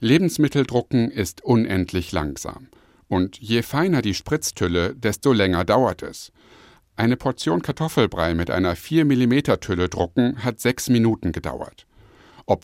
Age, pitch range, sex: 60-79, 90-125 Hz, male